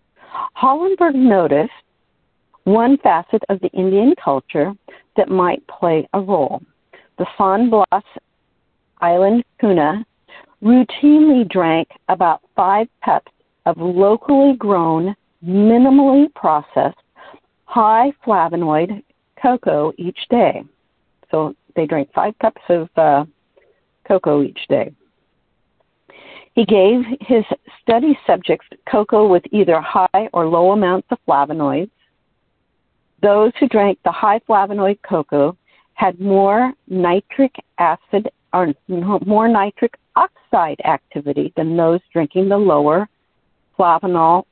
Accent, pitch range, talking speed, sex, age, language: American, 170-230 Hz, 105 wpm, female, 50-69, English